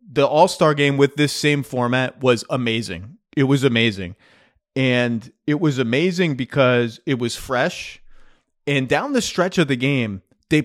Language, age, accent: English, 30-49, American